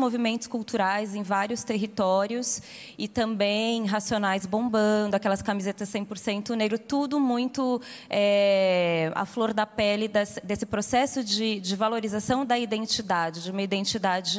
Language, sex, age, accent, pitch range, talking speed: Portuguese, female, 20-39, Brazilian, 200-235 Hz, 125 wpm